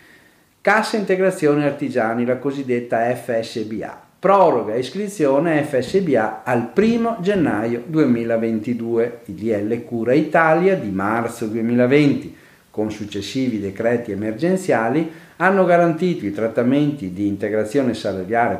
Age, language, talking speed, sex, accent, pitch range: 50-69, Italian, 100 wpm, male, native, 110-150 Hz